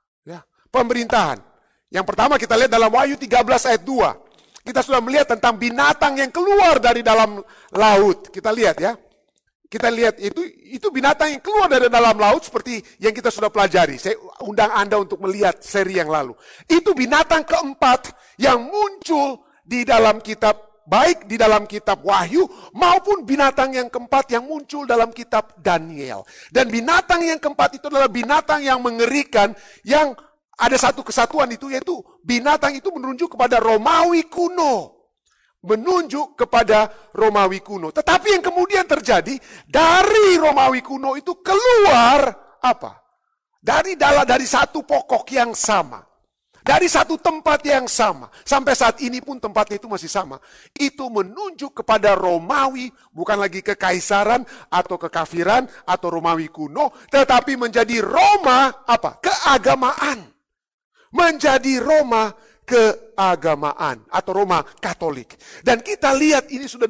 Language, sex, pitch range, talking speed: Indonesian, male, 215-300 Hz, 135 wpm